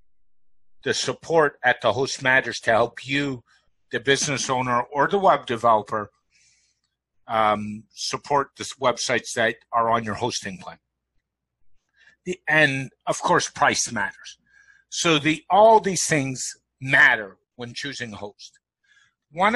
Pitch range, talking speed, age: 110-150 Hz, 130 wpm, 50-69